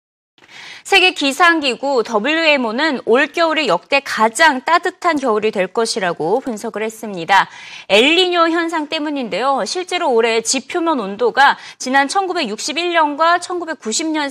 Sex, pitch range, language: female, 220-330 Hz, Korean